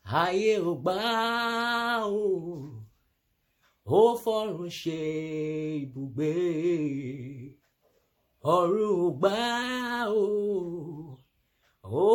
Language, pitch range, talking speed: English, 130-210 Hz, 60 wpm